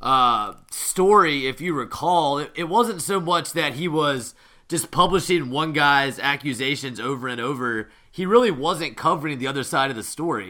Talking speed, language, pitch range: 175 wpm, English, 125-165 Hz